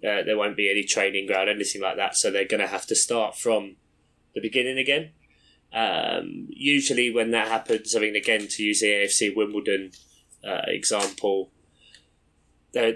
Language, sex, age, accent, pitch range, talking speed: English, male, 20-39, British, 100-115 Hz, 165 wpm